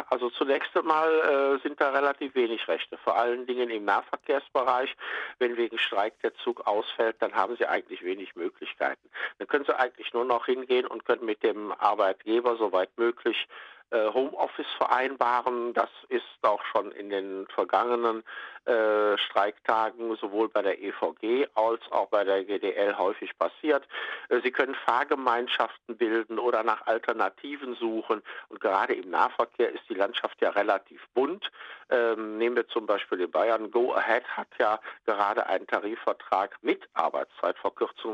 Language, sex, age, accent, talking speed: German, male, 50-69, German, 150 wpm